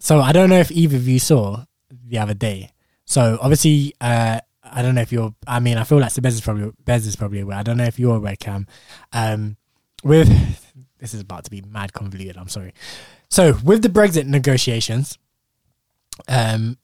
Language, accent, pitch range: English, British, 115-140 Hz